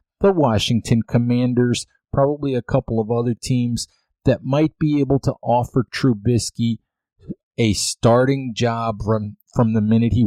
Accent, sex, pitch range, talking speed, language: American, male, 115-140 Hz, 140 wpm, English